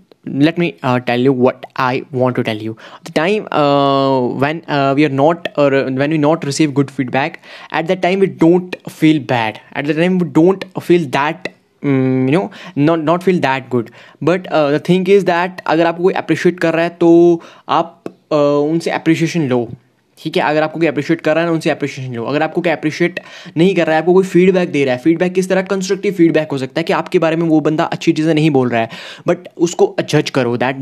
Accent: native